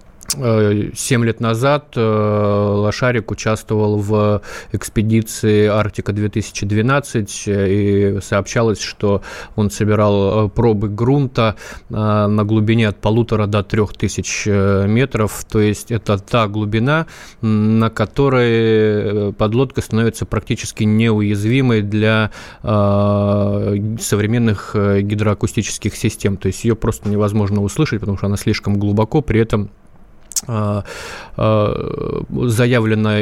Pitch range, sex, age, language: 100-110 Hz, male, 20-39, Russian